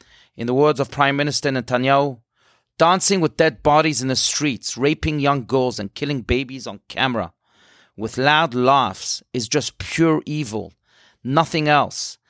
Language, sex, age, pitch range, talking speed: English, male, 40-59, 120-150 Hz, 150 wpm